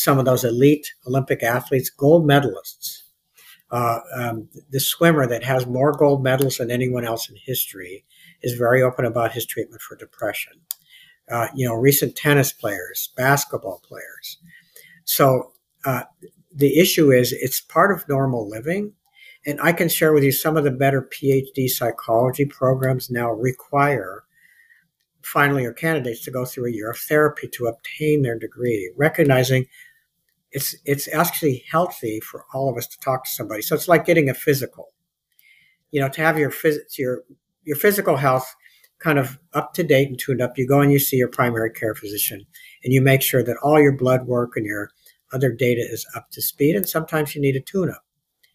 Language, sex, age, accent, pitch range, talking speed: English, male, 60-79, American, 125-155 Hz, 180 wpm